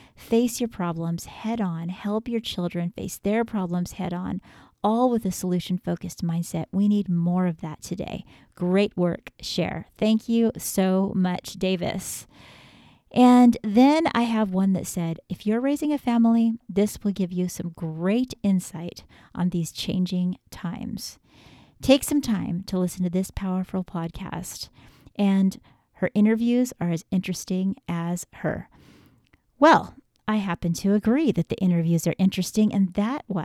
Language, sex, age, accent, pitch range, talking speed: English, female, 40-59, American, 180-215 Hz, 150 wpm